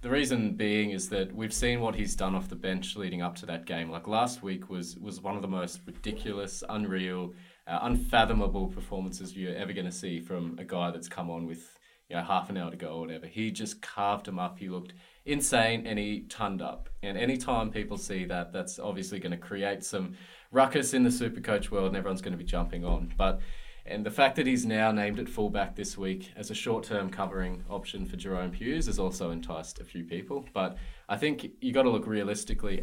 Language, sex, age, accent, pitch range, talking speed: English, male, 20-39, Australian, 90-105 Hz, 225 wpm